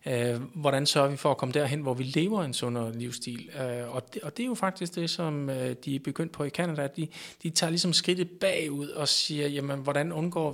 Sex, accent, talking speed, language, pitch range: male, native, 220 wpm, Danish, 130-160 Hz